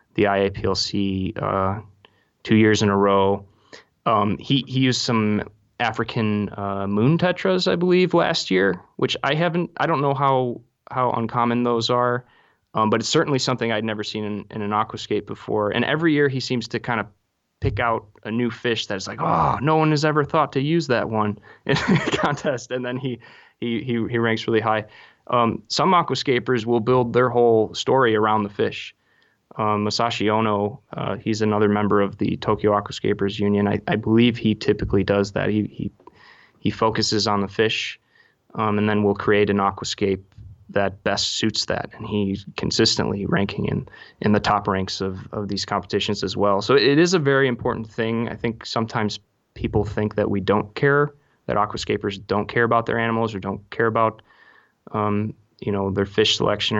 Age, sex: 20-39, male